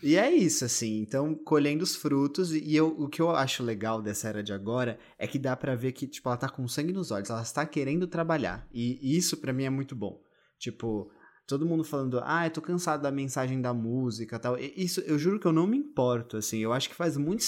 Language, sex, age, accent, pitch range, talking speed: Portuguese, male, 20-39, Brazilian, 115-155 Hz, 240 wpm